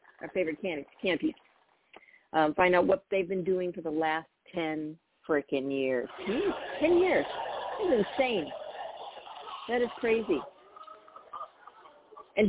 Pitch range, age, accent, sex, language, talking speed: 140-190 Hz, 40-59, American, female, English, 135 wpm